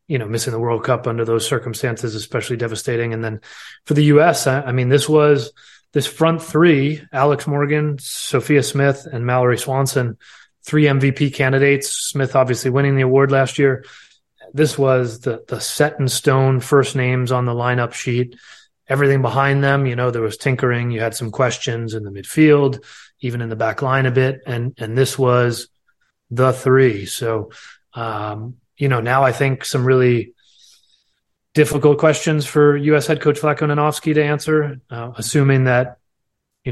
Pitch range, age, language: 120-140 Hz, 30-49, English